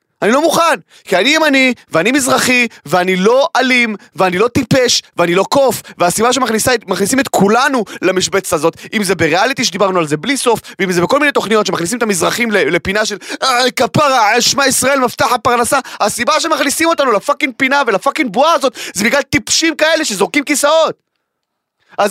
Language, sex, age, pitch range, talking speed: Hebrew, male, 30-49, 195-275 Hz, 165 wpm